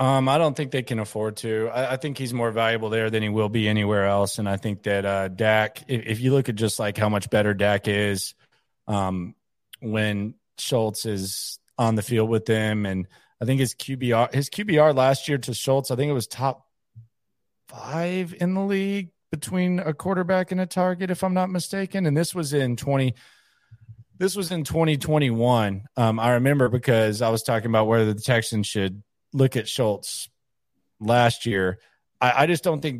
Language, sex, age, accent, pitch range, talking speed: English, male, 30-49, American, 110-145 Hz, 200 wpm